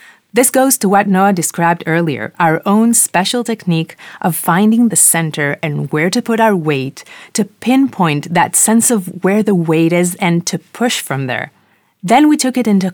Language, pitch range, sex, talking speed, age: Hebrew, 165-215 Hz, female, 185 wpm, 30-49